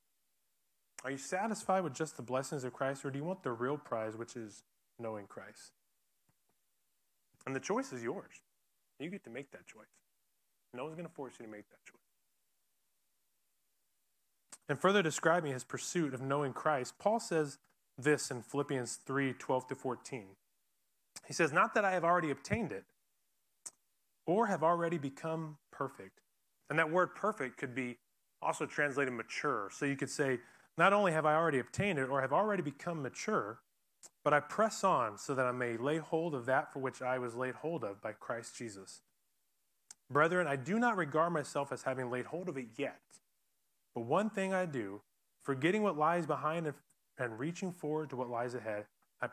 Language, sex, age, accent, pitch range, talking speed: English, male, 20-39, American, 125-160 Hz, 180 wpm